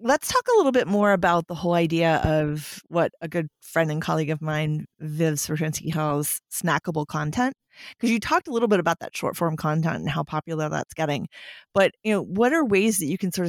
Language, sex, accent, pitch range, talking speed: English, female, American, 160-190 Hz, 220 wpm